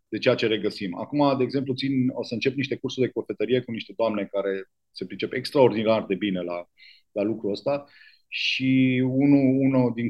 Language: Romanian